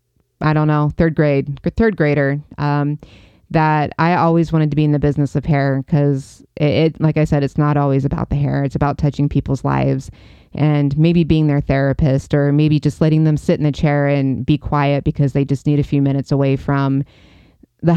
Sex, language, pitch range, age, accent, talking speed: female, English, 140-160 Hz, 20-39, American, 205 wpm